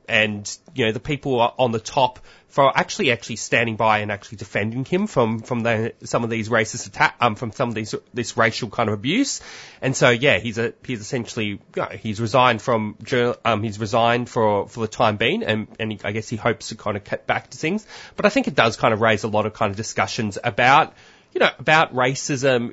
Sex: male